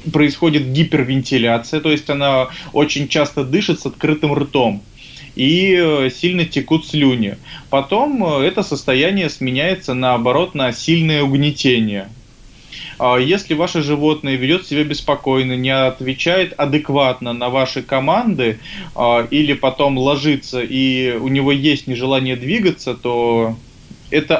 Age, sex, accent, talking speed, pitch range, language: 20-39, male, native, 115 wpm, 125-155 Hz, Russian